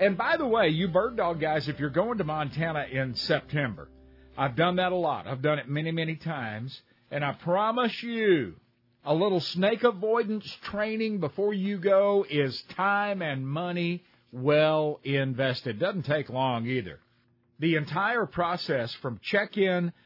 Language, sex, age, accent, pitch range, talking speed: English, male, 50-69, American, 135-195 Hz, 160 wpm